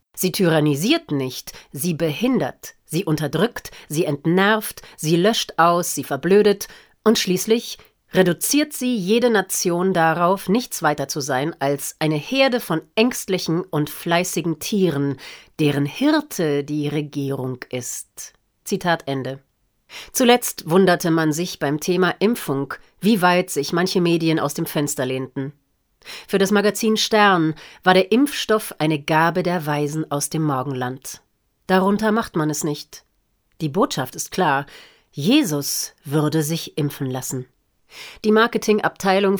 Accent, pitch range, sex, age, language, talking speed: German, 145-190 Hz, female, 40-59, German, 130 wpm